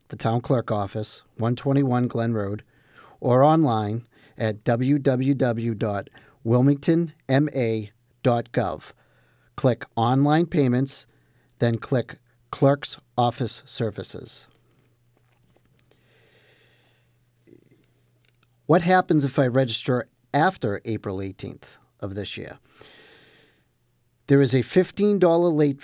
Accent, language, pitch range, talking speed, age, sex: American, English, 115-140 Hz, 80 wpm, 50-69, male